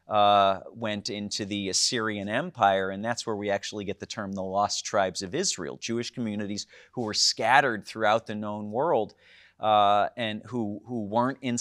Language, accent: English, American